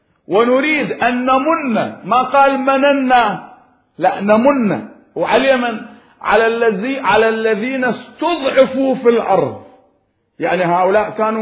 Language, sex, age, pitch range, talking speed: Arabic, male, 50-69, 215-270 Hz, 105 wpm